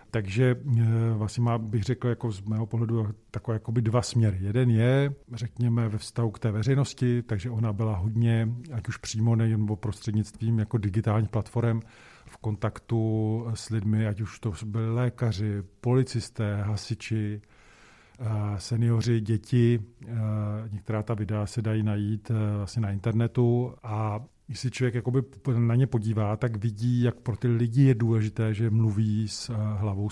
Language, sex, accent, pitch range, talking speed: Czech, male, native, 110-125 Hz, 145 wpm